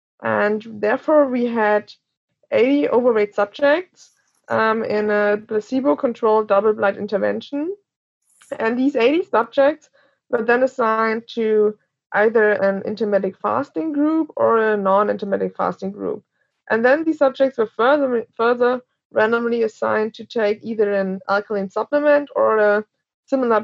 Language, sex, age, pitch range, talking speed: English, female, 20-39, 205-255 Hz, 125 wpm